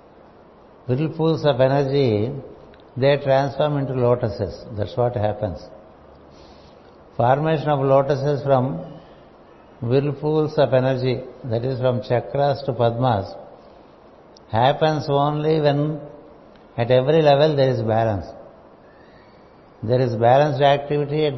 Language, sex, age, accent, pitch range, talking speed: English, male, 60-79, Indian, 125-145 Hz, 105 wpm